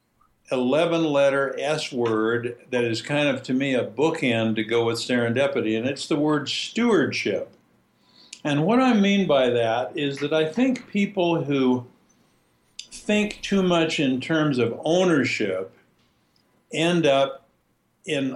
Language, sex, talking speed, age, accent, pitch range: English, male, 135 wpm, 60-79, American, 115-150 Hz